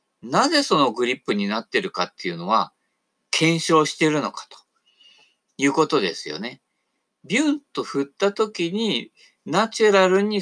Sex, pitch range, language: male, 170-235 Hz, Japanese